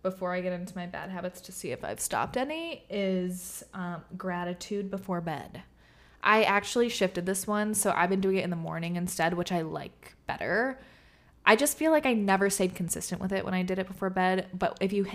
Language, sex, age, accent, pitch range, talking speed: English, female, 20-39, American, 170-205 Hz, 220 wpm